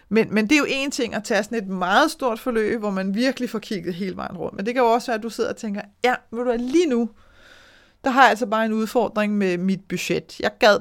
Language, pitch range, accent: Danish, 195-245 Hz, native